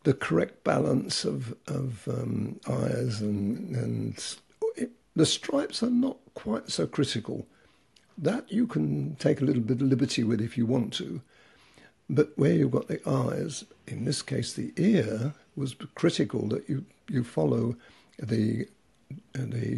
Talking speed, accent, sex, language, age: 150 wpm, British, male, English, 60-79